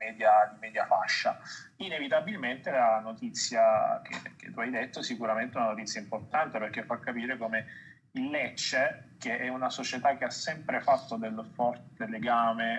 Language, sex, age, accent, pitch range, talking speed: Italian, male, 30-49, native, 115-175 Hz, 155 wpm